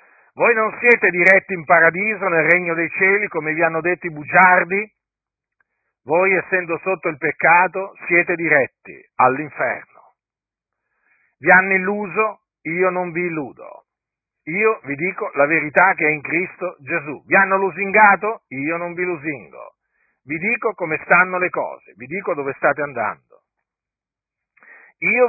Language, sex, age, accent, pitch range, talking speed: Italian, male, 50-69, native, 160-195 Hz, 140 wpm